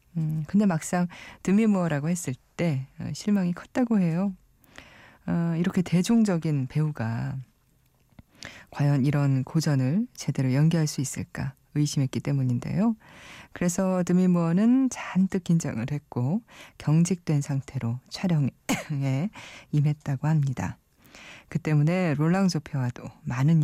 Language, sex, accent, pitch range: Korean, female, native, 130-175 Hz